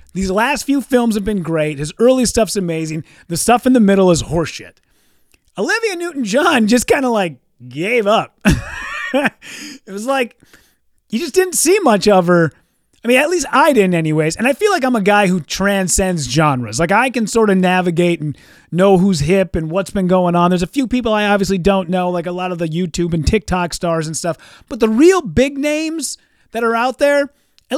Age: 30-49